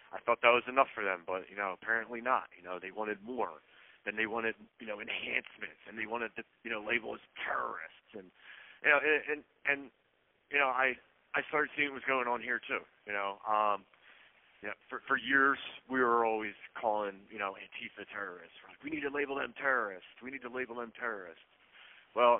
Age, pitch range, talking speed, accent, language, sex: 40-59, 105-125 Hz, 220 wpm, American, English, male